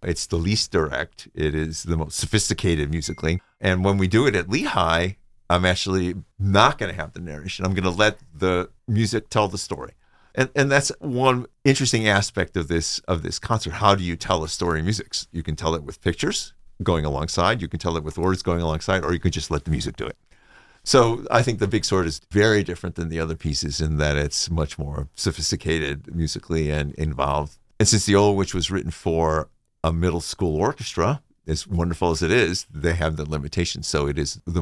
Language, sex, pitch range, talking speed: English, male, 80-115 Hz, 215 wpm